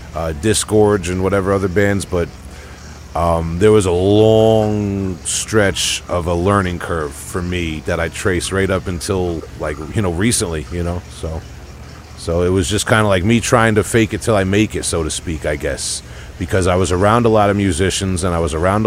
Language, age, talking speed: English, 40-59, 205 wpm